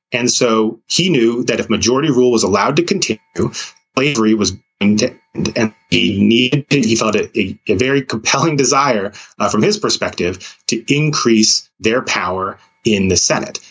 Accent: American